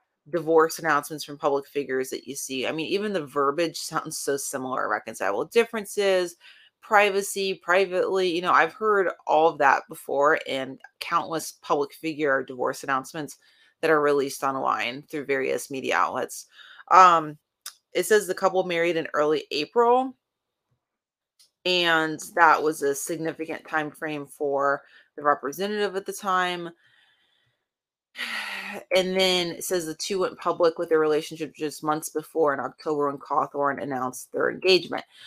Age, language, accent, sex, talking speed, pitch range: 30-49, English, American, female, 145 wpm, 145-185 Hz